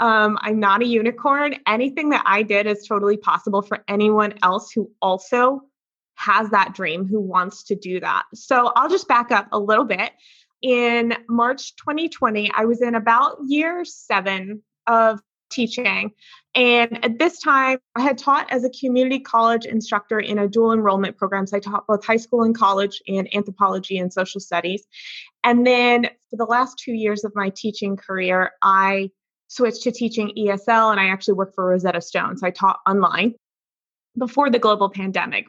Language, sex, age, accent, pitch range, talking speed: English, female, 20-39, American, 195-240 Hz, 180 wpm